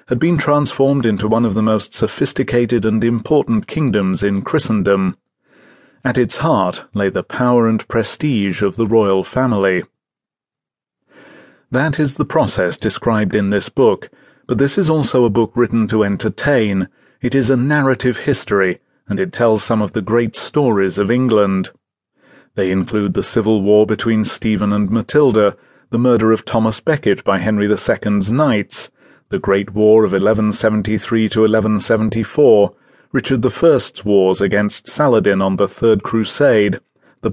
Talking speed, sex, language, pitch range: 150 wpm, male, English, 100-120 Hz